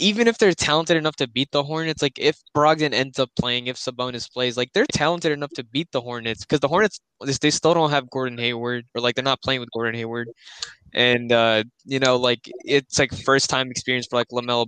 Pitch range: 120-140 Hz